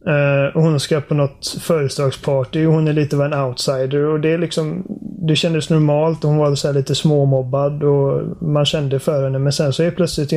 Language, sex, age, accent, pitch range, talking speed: Swedish, male, 30-49, native, 140-170 Hz, 215 wpm